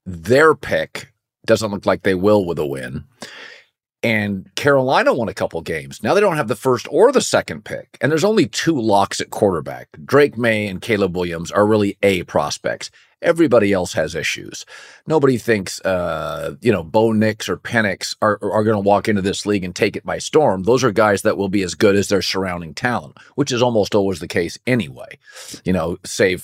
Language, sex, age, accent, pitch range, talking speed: English, male, 40-59, American, 100-120 Hz, 205 wpm